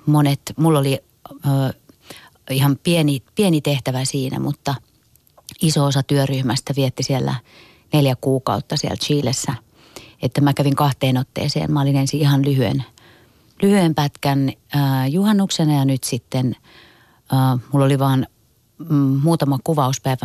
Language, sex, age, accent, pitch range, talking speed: Finnish, female, 30-49, native, 135-145 Hz, 125 wpm